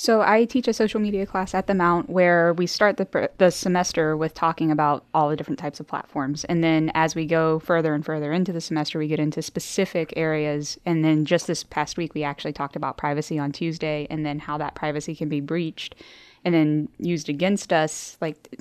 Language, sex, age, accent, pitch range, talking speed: English, female, 10-29, American, 150-175 Hz, 220 wpm